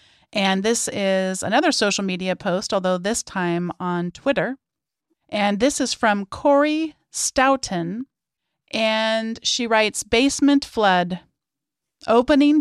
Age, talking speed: 40-59, 115 wpm